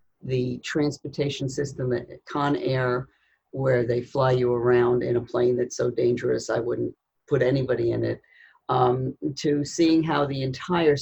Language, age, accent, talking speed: English, 50-69, American, 160 wpm